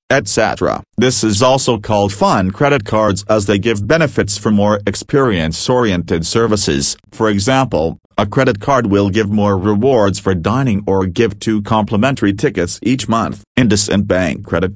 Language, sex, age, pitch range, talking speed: English, male, 40-59, 95-115 Hz, 155 wpm